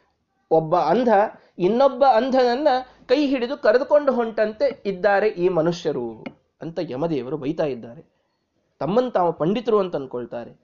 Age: 20-39